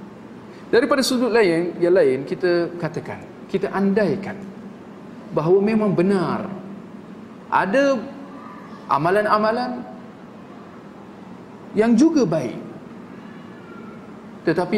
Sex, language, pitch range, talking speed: male, Malay, 175-225 Hz, 75 wpm